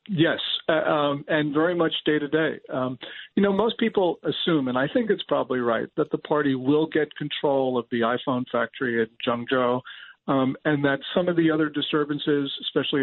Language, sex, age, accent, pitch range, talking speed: English, male, 50-69, American, 135-165 Hz, 185 wpm